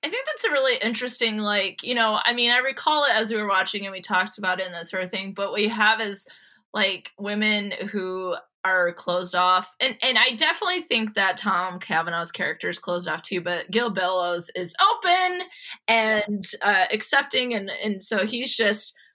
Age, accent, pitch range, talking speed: 20-39, American, 180-225 Hz, 205 wpm